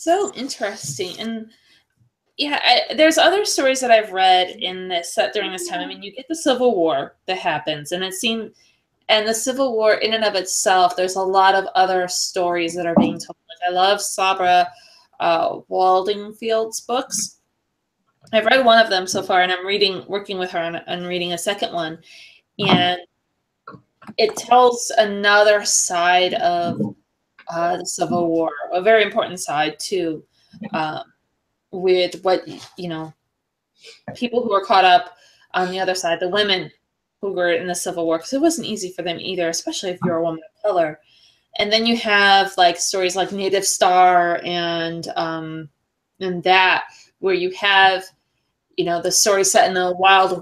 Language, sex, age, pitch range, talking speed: English, female, 20-39, 175-215 Hz, 175 wpm